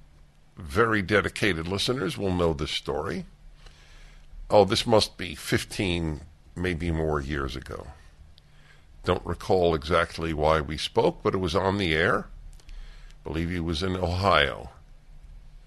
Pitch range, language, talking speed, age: 75-115 Hz, English, 130 wpm, 60-79